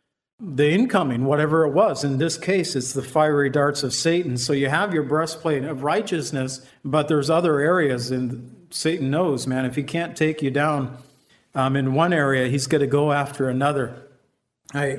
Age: 50-69